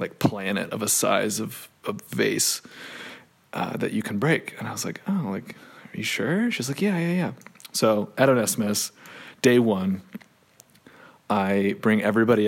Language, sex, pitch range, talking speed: English, male, 105-125 Hz, 170 wpm